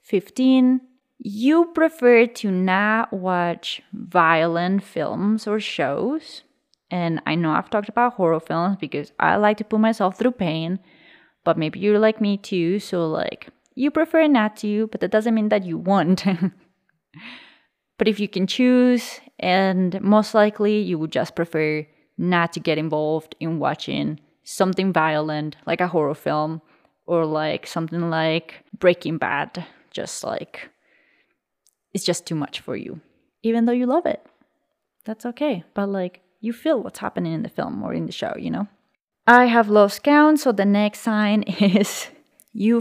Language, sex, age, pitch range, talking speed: English, female, 20-39, 170-235 Hz, 160 wpm